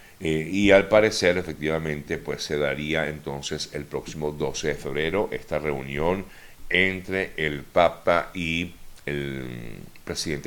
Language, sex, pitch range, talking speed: Spanish, male, 75-95 Hz, 125 wpm